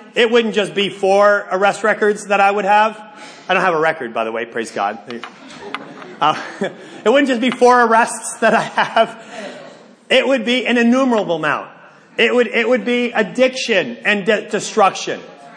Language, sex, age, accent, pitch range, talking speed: English, male, 40-59, American, 195-240 Hz, 175 wpm